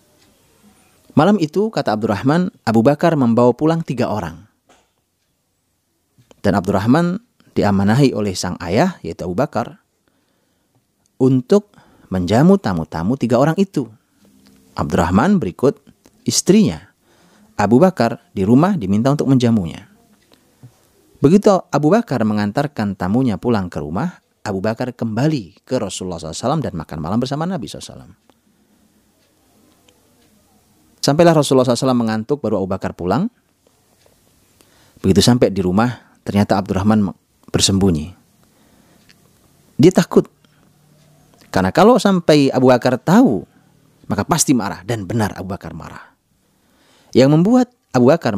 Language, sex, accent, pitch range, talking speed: Indonesian, male, native, 95-140 Hz, 110 wpm